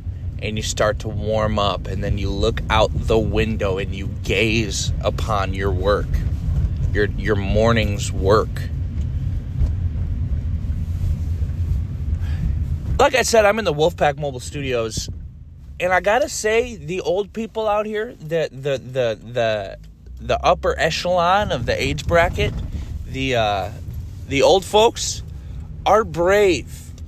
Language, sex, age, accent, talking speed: English, male, 20-39, American, 130 wpm